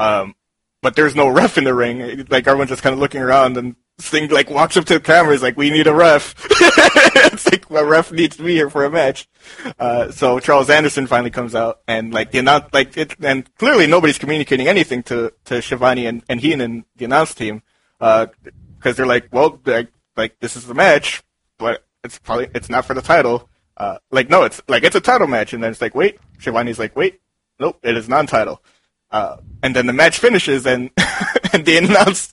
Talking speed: 215 wpm